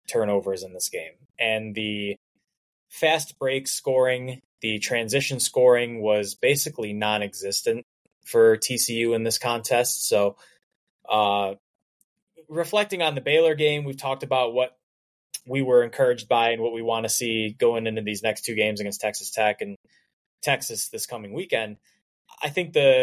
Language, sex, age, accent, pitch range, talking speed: English, male, 10-29, American, 105-135 Hz, 150 wpm